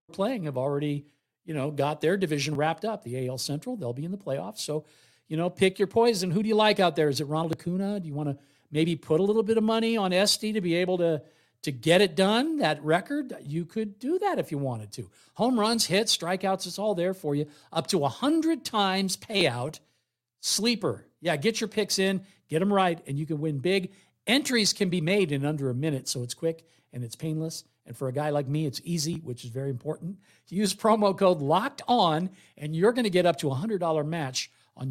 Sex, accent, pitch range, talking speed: male, American, 145-195 Hz, 235 wpm